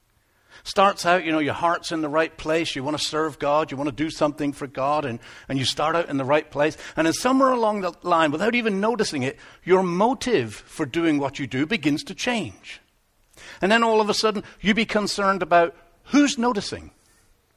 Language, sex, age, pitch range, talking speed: English, male, 60-79, 150-215 Hz, 215 wpm